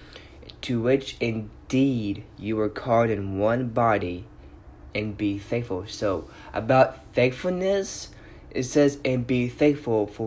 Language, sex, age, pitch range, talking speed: English, male, 20-39, 100-120 Hz, 125 wpm